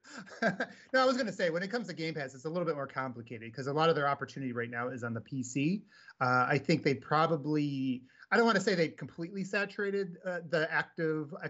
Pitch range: 125-160 Hz